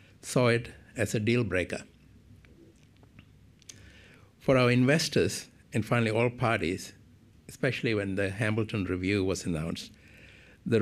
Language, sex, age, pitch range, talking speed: English, male, 60-79, 100-130 Hz, 115 wpm